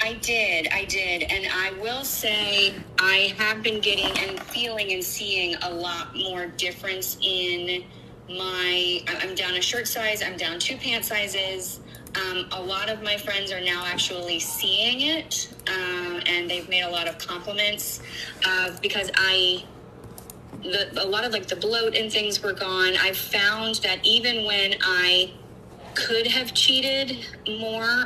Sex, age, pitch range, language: female, 20-39, 180-220 Hz, English